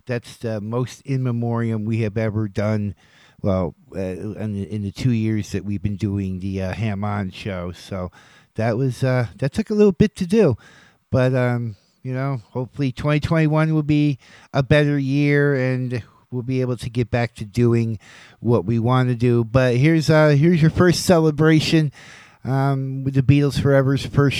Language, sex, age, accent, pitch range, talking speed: English, male, 50-69, American, 115-150 Hz, 185 wpm